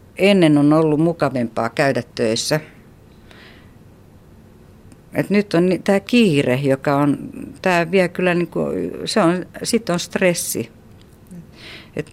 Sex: female